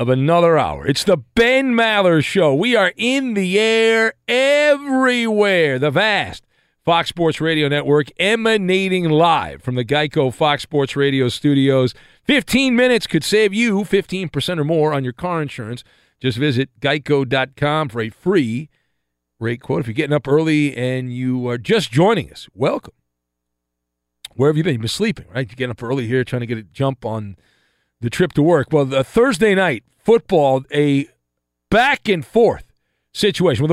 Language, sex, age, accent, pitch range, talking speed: English, male, 40-59, American, 120-180 Hz, 165 wpm